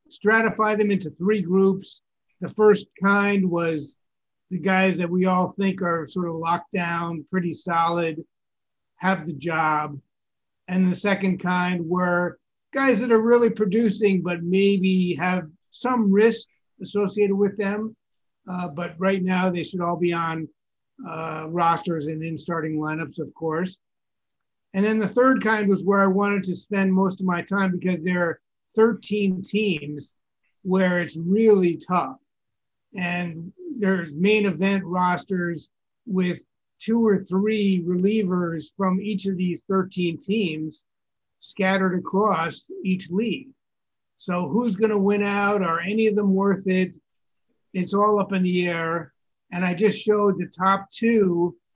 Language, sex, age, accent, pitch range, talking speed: English, male, 50-69, American, 175-200 Hz, 150 wpm